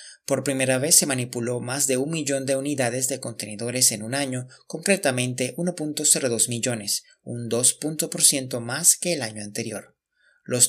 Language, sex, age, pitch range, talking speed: Spanish, male, 30-49, 120-145 Hz, 150 wpm